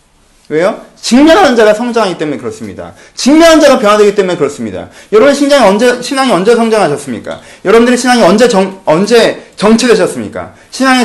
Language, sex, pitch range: Korean, male, 190-250 Hz